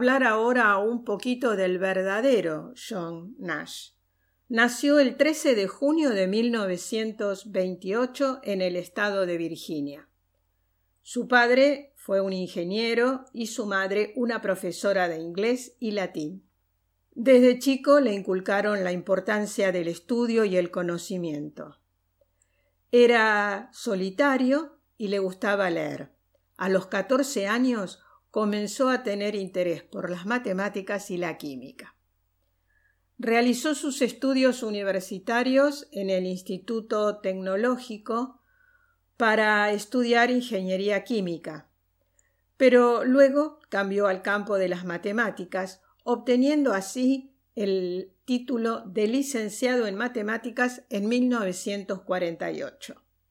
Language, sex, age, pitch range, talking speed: Spanish, female, 50-69, 185-245 Hz, 105 wpm